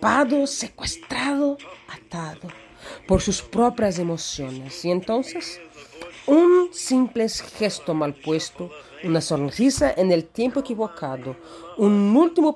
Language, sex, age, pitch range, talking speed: Portuguese, female, 40-59, 155-235 Hz, 100 wpm